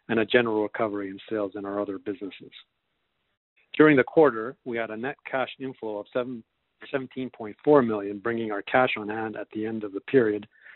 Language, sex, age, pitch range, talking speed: English, male, 40-59, 105-120 Hz, 190 wpm